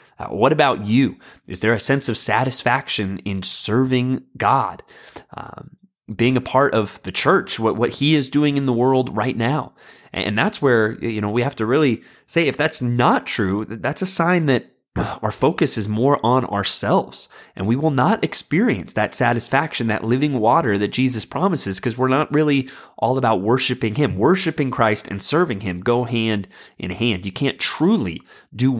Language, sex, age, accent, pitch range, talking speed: English, male, 30-49, American, 110-140 Hz, 180 wpm